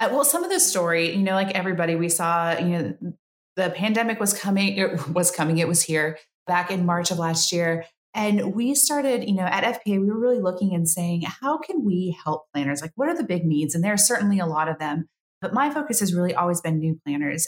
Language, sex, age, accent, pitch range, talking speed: English, female, 30-49, American, 170-225 Hz, 245 wpm